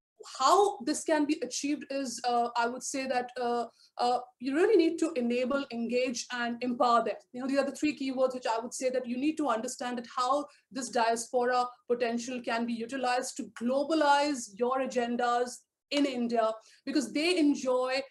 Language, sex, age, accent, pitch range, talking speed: English, female, 30-49, Indian, 245-295 Hz, 180 wpm